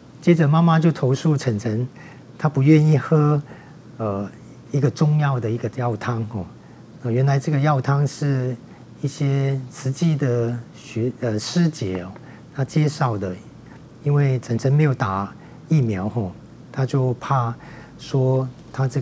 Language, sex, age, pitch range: Chinese, male, 40-59, 120-145 Hz